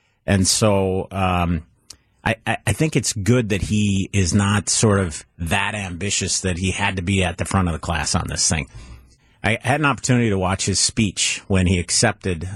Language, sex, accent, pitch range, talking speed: English, male, American, 90-110 Hz, 195 wpm